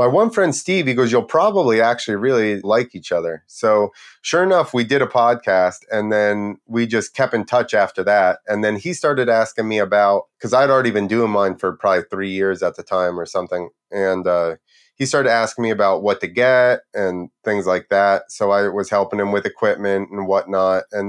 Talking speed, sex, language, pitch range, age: 215 wpm, male, English, 95-115 Hz, 30-49